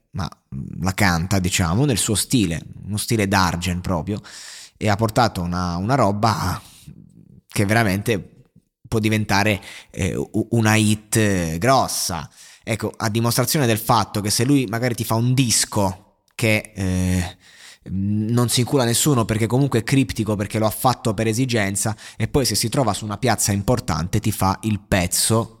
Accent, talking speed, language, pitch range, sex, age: native, 155 wpm, Italian, 100-120 Hz, male, 20-39